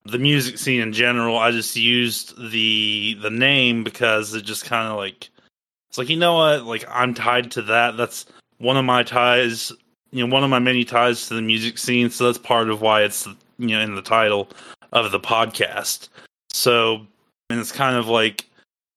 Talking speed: 200 wpm